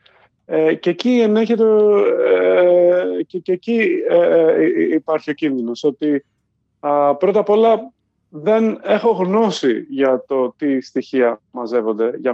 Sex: male